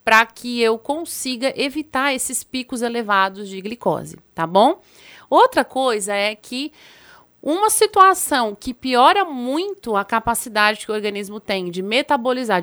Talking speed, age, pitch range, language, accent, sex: 140 wpm, 30-49, 215-285 Hz, Portuguese, Brazilian, female